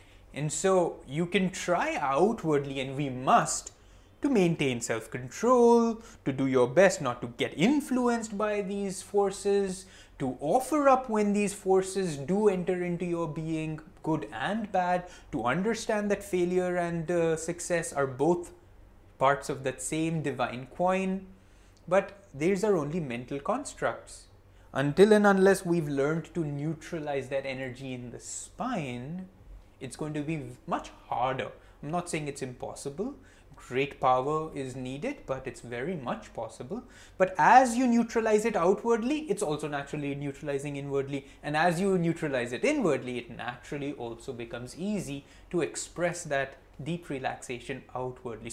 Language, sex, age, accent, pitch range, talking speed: English, male, 20-39, Indian, 130-185 Hz, 145 wpm